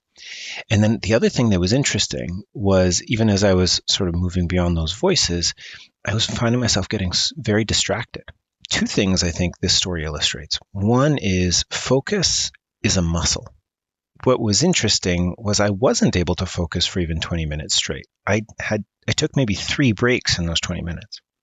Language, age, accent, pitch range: English, 30-49, American, 90-110 Hz